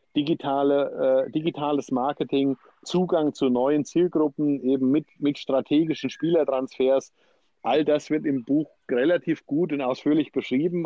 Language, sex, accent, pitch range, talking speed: German, male, German, 130-155 Hz, 125 wpm